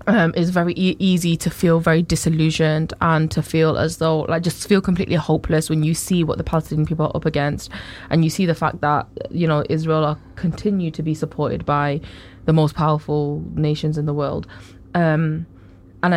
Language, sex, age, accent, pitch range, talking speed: English, female, 20-39, British, 150-170 Hz, 195 wpm